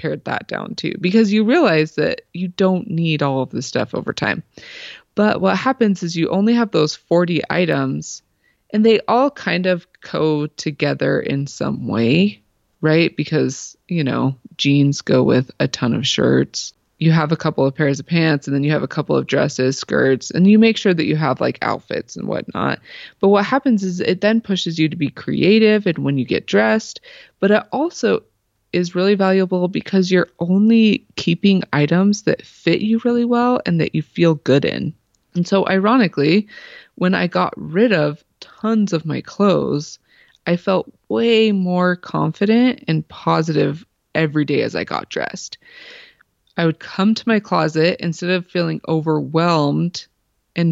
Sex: female